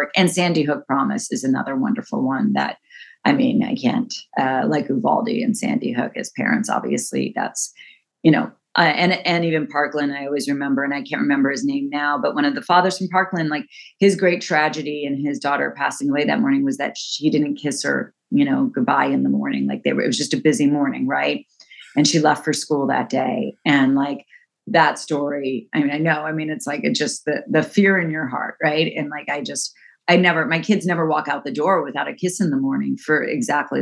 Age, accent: 30-49, American